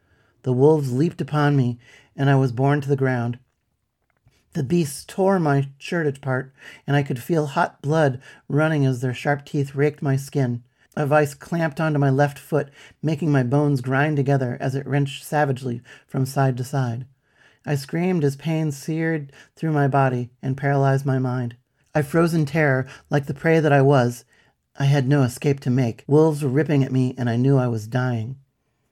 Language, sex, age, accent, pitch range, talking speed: English, male, 40-59, American, 130-150 Hz, 190 wpm